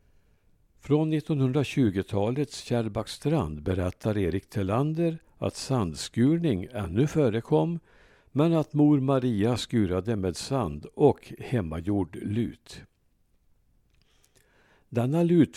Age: 60-79